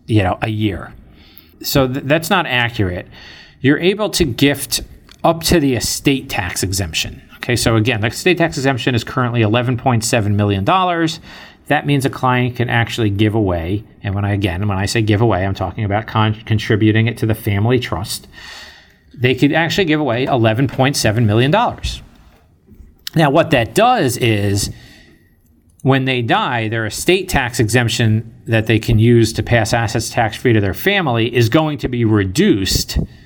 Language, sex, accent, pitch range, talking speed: English, male, American, 110-130 Hz, 165 wpm